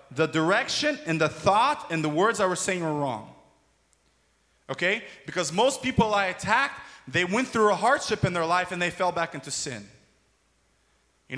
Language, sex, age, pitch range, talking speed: English, male, 30-49, 165-270 Hz, 180 wpm